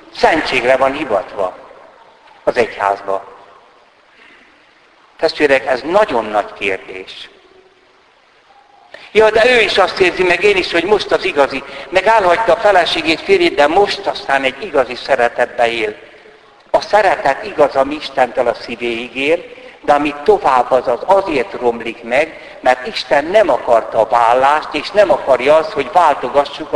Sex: male